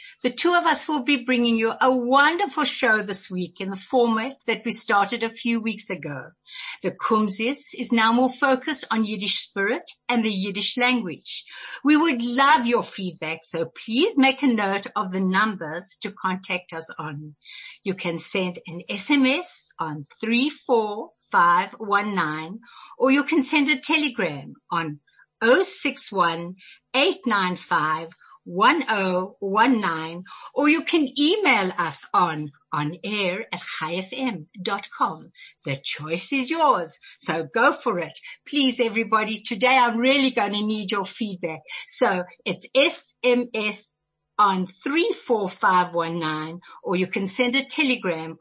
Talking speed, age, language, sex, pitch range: 135 wpm, 60-79, English, female, 185-265 Hz